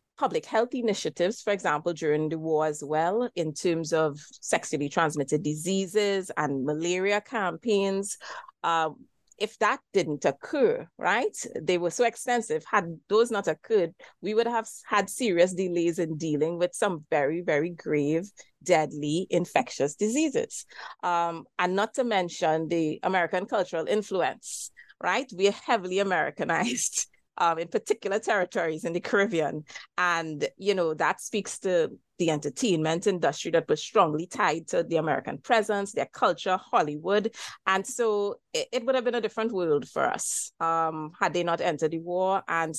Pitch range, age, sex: 160-215 Hz, 30-49, female